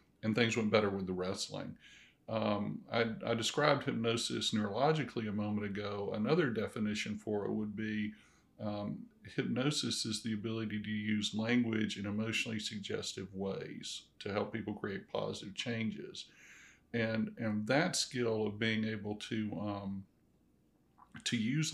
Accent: American